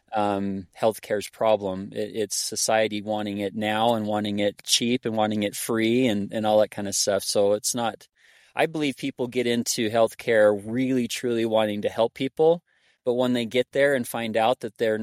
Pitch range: 110-130 Hz